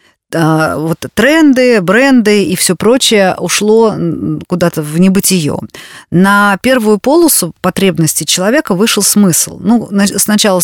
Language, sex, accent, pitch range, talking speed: Russian, female, native, 170-215 Hz, 105 wpm